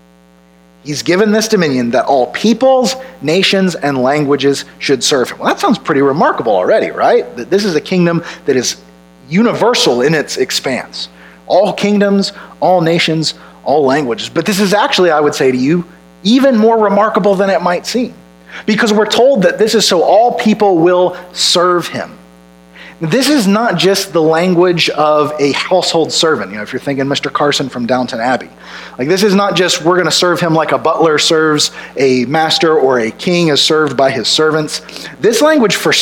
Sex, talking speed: male, 185 wpm